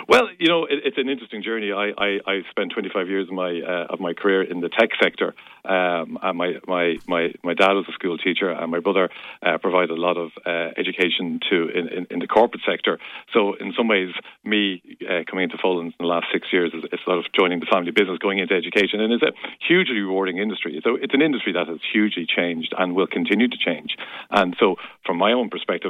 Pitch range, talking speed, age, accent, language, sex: 90-105 Hz, 235 wpm, 50-69, Irish, English, male